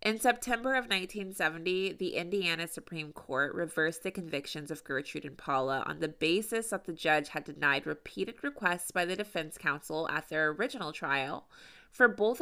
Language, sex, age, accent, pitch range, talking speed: English, female, 20-39, American, 155-205 Hz, 170 wpm